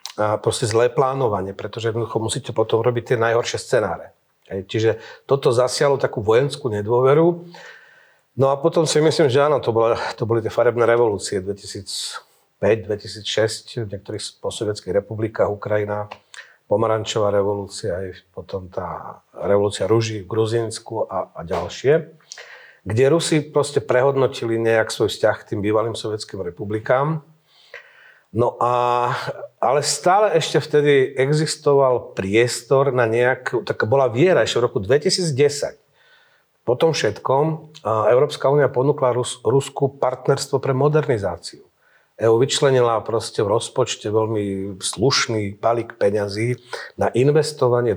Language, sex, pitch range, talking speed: Slovak, male, 110-140 Hz, 125 wpm